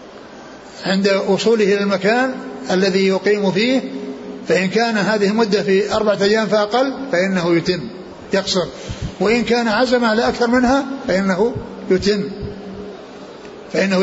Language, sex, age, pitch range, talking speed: Arabic, male, 60-79, 185-220 Hz, 115 wpm